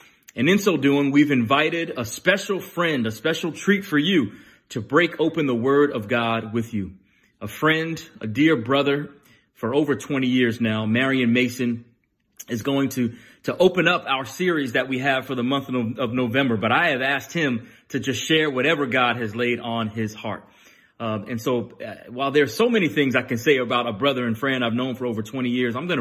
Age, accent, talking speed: 30-49, American, 210 wpm